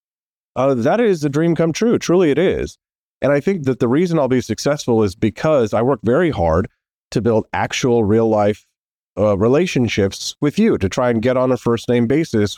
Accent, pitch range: American, 100-135 Hz